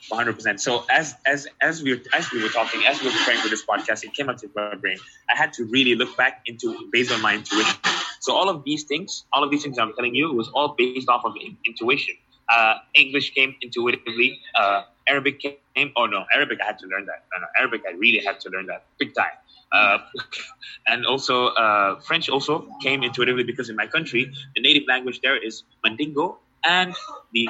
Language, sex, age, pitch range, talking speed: English, male, 20-39, 110-145 Hz, 220 wpm